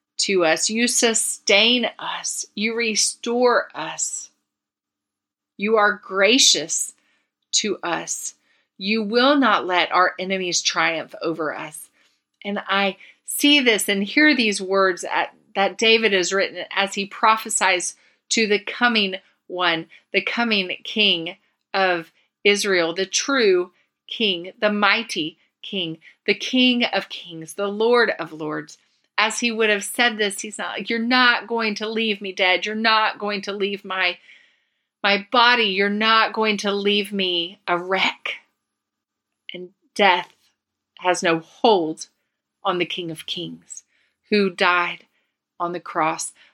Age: 40-59